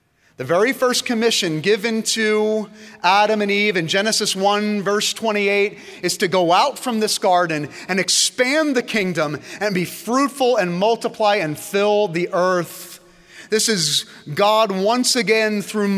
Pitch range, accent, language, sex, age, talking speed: 155-210 Hz, American, English, male, 30-49, 150 wpm